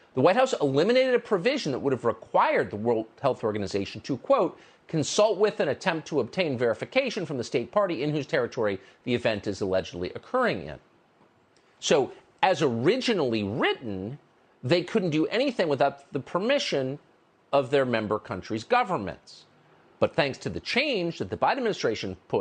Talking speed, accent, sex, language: 165 wpm, American, male, English